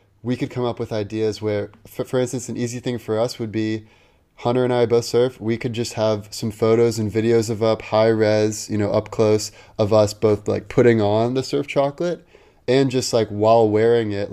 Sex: male